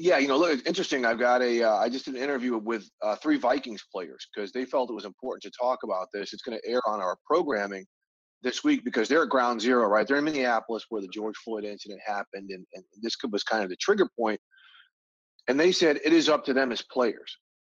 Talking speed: 250 wpm